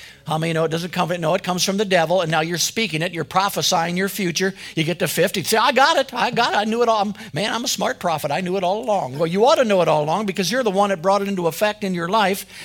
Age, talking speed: 50-69, 335 wpm